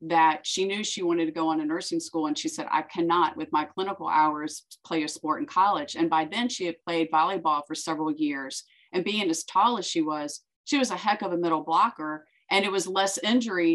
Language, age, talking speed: English, 40-59, 240 wpm